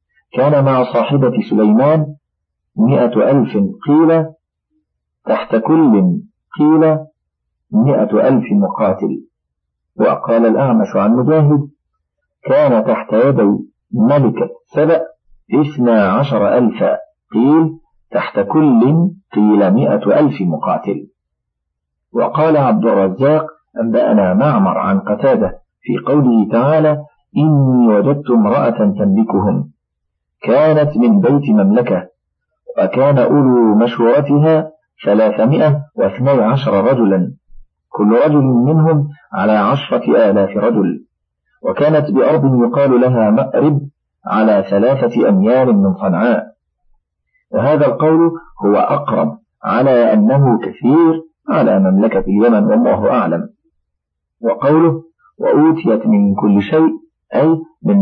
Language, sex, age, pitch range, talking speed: Arabic, male, 50-69, 115-165 Hz, 95 wpm